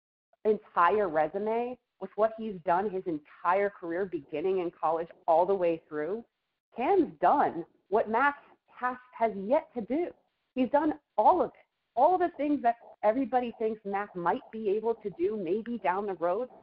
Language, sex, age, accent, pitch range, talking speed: English, female, 40-59, American, 180-235 Hz, 170 wpm